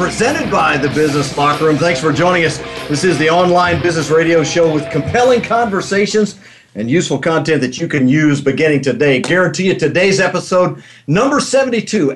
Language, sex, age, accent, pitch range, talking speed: English, male, 50-69, American, 140-175 Hz, 175 wpm